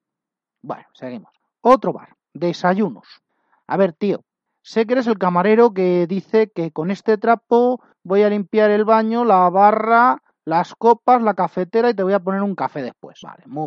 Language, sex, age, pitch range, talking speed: Spanish, male, 30-49, 165-220 Hz, 175 wpm